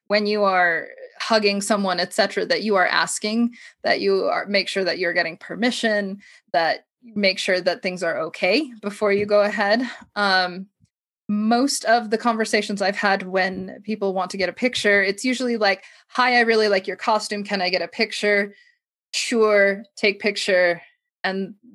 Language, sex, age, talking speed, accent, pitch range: English, female, 20-39, 175 wpm, American, 185-225 Hz